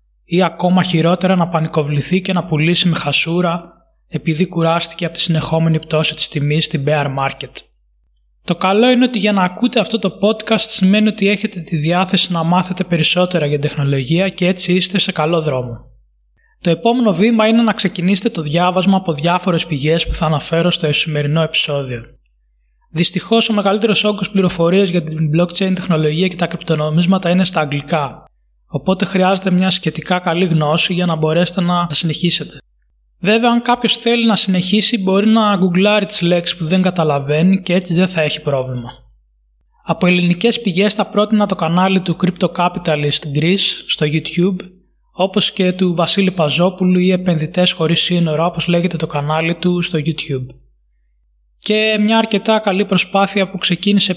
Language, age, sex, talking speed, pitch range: Greek, 20-39, male, 160 wpm, 155-190 Hz